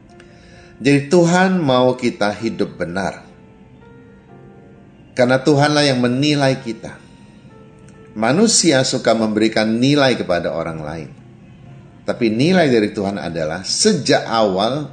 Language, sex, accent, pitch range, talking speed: Indonesian, male, native, 105-140 Hz, 100 wpm